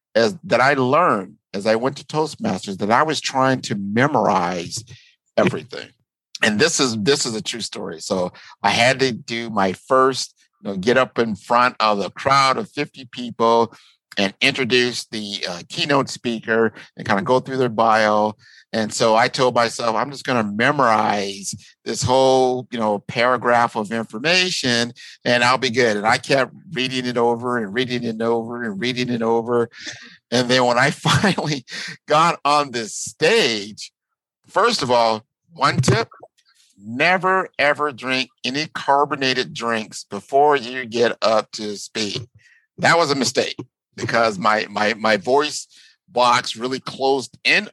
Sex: male